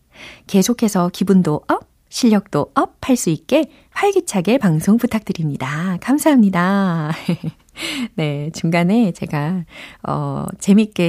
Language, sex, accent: Korean, female, native